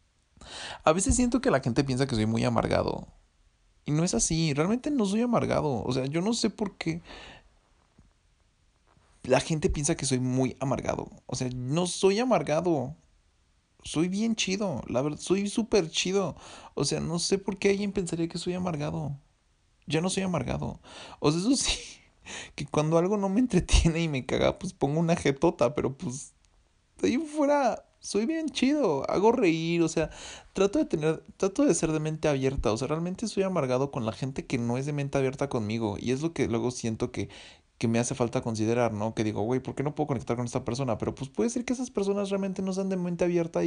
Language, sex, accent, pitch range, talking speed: English, male, Mexican, 120-180 Hz, 210 wpm